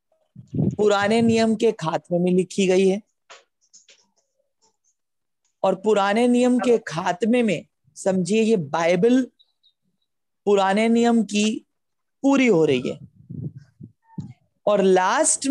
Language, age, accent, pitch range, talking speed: Hindi, 40-59, native, 170-230 Hz, 100 wpm